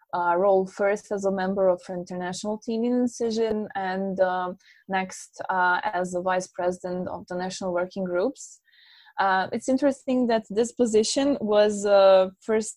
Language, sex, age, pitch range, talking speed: English, female, 20-39, 180-210 Hz, 155 wpm